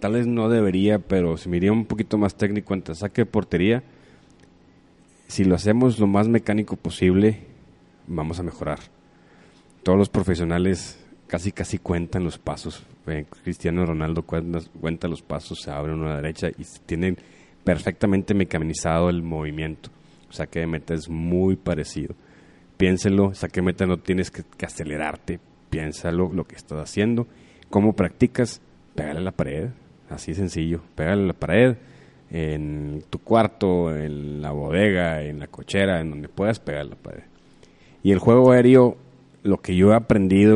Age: 30-49